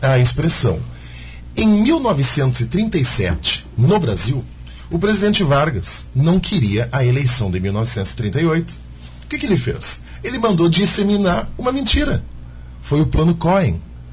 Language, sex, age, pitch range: Portuguese, male, 40-59, 95-140 Hz